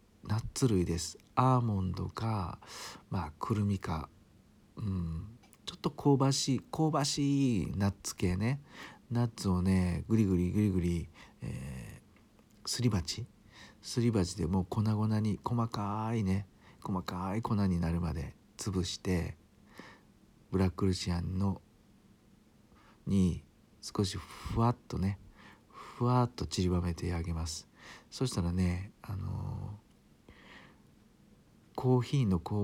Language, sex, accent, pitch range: Japanese, male, native, 90-110 Hz